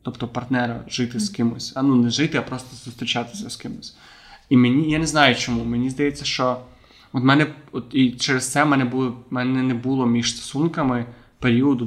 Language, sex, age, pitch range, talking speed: Ukrainian, male, 20-39, 120-135 Hz, 185 wpm